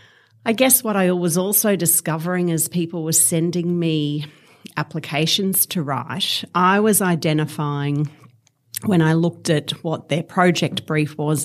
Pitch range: 145-175 Hz